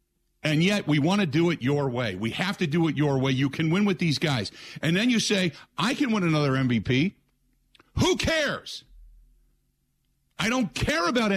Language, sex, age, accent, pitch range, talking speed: English, male, 50-69, American, 130-195 Hz, 195 wpm